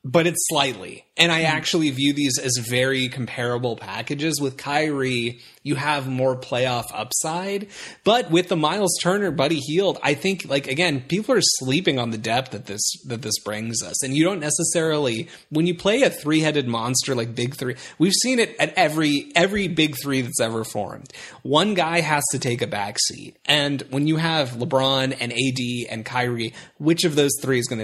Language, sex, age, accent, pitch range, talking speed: English, male, 30-49, American, 120-150 Hz, 190 wpm